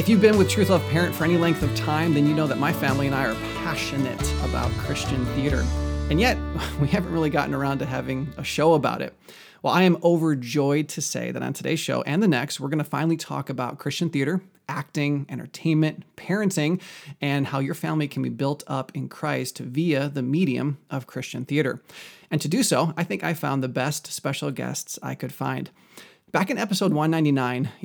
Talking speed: 210 wpm